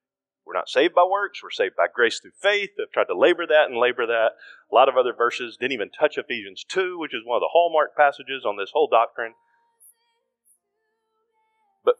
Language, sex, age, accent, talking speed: English, male, 40-59, American, 205 wpm